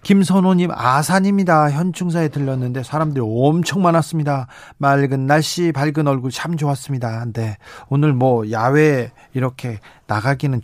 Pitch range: 130-175 Hz